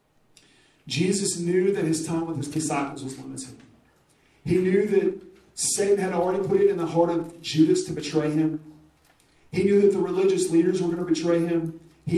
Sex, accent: male, American